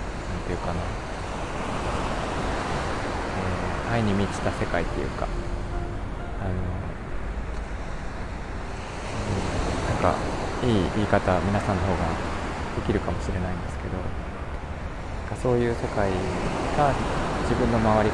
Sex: male